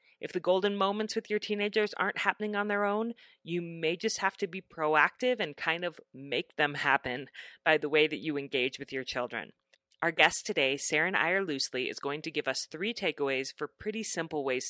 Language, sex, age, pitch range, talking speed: English, female, 30-49, 140-190 Hz, 210 wpm